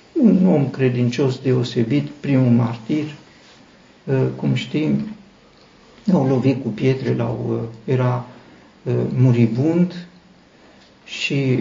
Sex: male